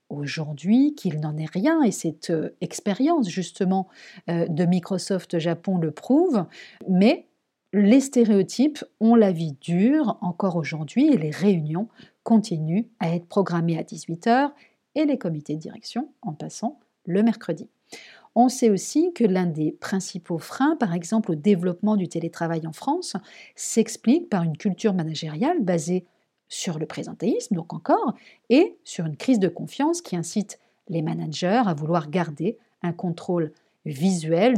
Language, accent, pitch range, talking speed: French, French, 170-230 Hz, 145 wpm